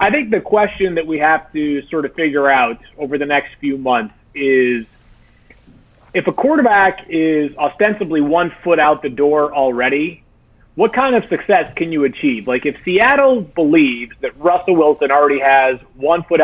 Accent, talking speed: American, 170 wpm